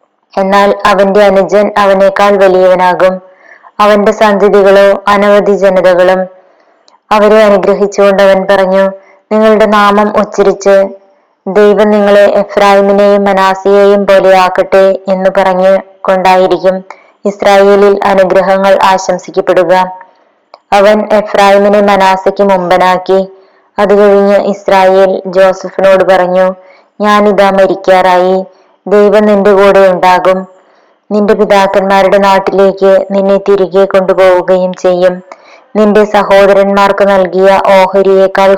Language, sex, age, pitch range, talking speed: Malayalam, female, 20-39, 190-200 Hz, 85 wpm